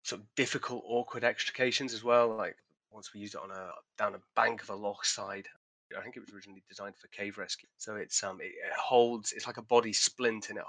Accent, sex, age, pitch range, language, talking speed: British, male, 30-49, 100-115 Hz, English, 240 wpm